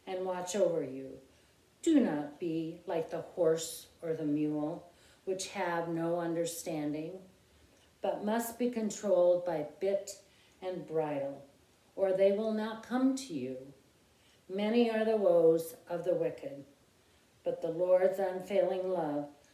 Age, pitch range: 50-69, 145-190 Hz